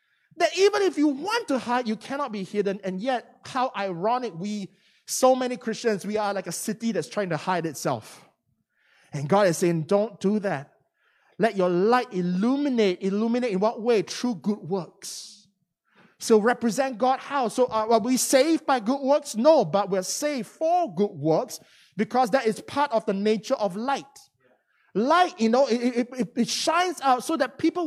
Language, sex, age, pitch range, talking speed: English, male, 20-39, 220-315 Hz, 185 wpm